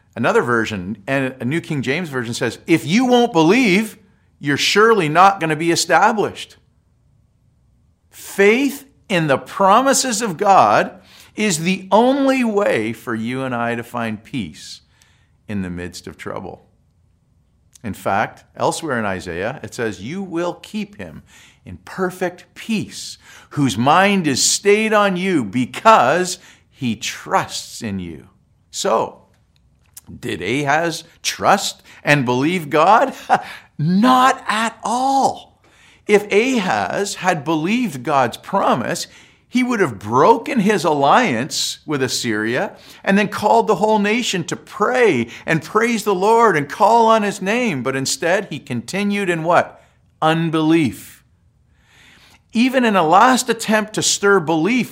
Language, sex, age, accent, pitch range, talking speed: English, male, 50-69, American, 135-215 Hz, 135 wpm